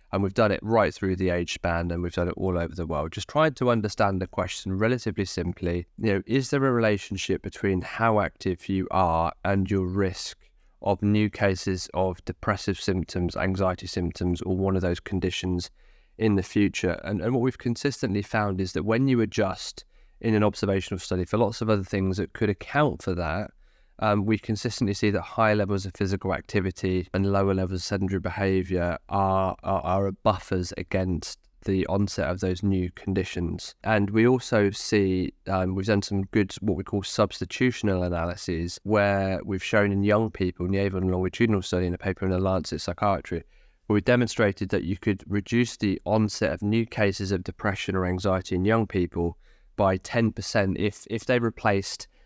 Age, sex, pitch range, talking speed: 20-39, male, 90-105 Hz, 190 wpm